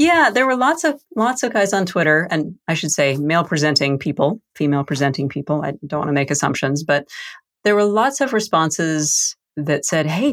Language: English